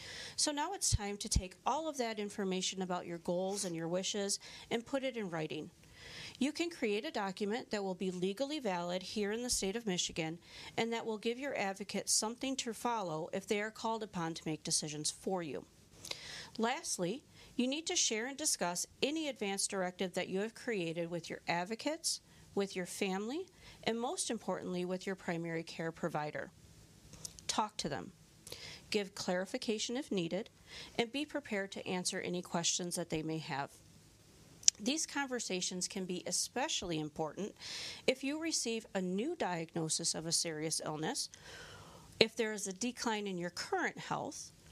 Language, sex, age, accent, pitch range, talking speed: English, female, 40-59, American, 175-240 Hz, 170 wpm